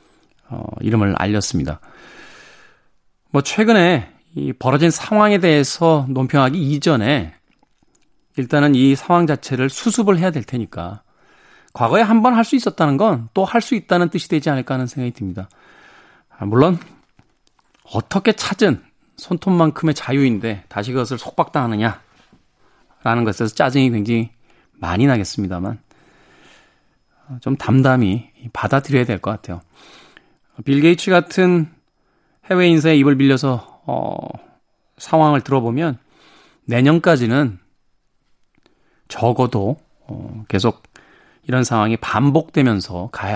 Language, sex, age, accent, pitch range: Korean, male, 40-59, native, 110-160 Hz